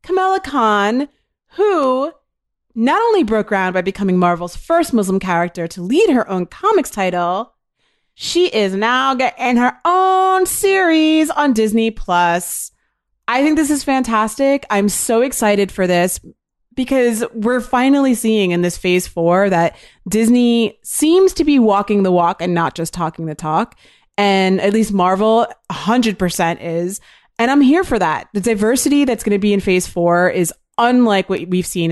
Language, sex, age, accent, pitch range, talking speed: English, female, 30-49, American, 185-250 Hz, 160 wpm